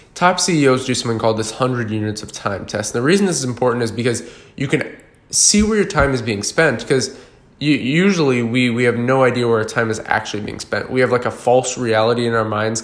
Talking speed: 240 wpm